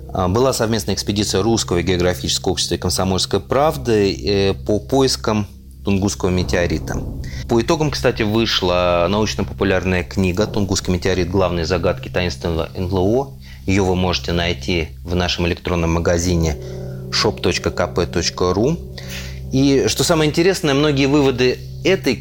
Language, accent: Russian, native